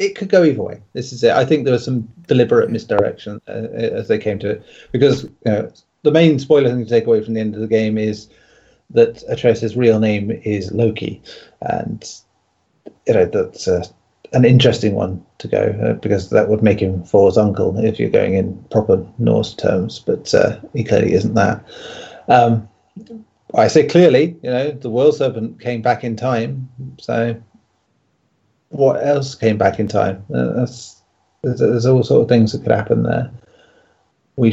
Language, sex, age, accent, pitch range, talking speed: English, male, 30-49, British, 110-135 Hz, 185 wpm